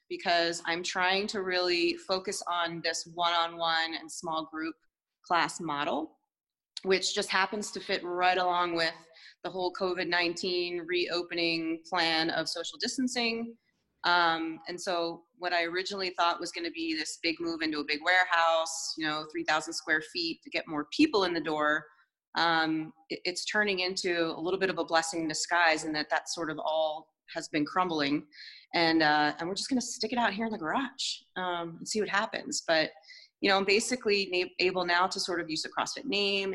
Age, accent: 30-49, American